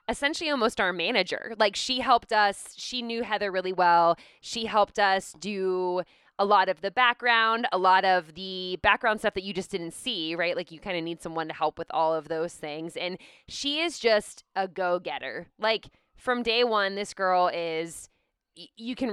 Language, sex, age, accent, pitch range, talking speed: English, female, 20-39, American, 175-225 Hz, 195 wpm